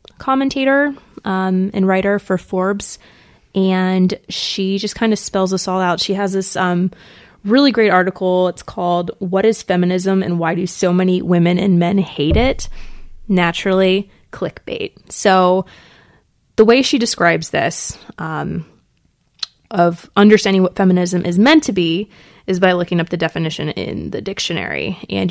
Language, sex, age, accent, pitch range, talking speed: English, female, 20-39, American, 180-215 Hz, 150 wpm